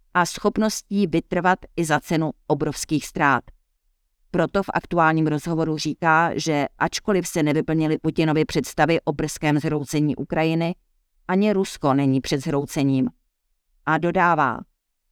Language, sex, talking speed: Czech, female, 120 wpm